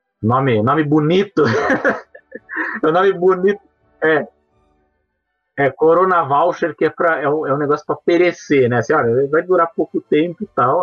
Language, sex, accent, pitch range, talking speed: Portuguese, male, Brazilian, 115-170 Hz, 160 wpm